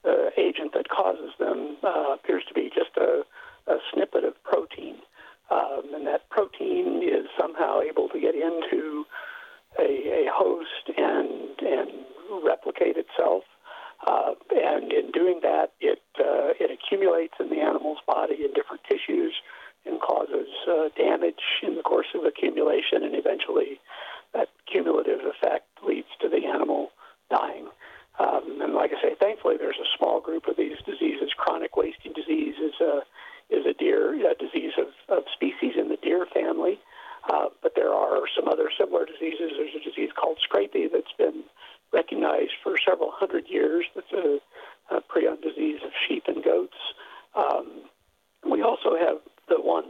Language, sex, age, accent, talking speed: English, male, 60-79, American, 160 wpm